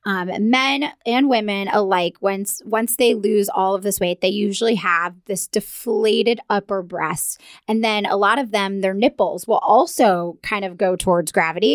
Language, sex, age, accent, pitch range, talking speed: English, female, 20-39, American, 190-240 Hz, 185 wpm